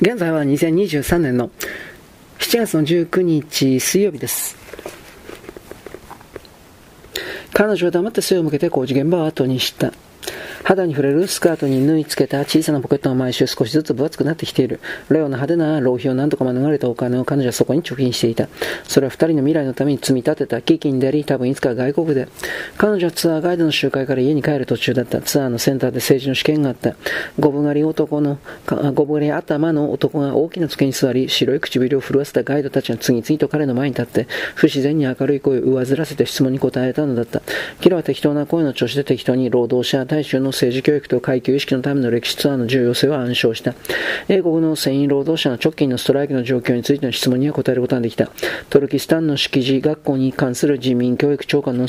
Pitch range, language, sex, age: 130-150 Hz, Japanese, male, 40-59